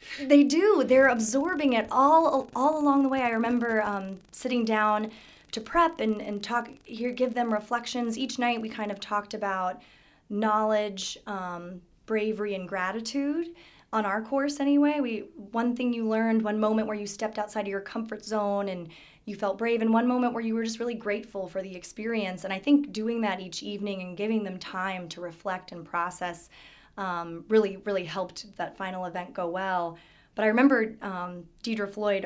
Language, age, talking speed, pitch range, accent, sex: English, 20-39, 190 wpm, 185-230 Hz, American, female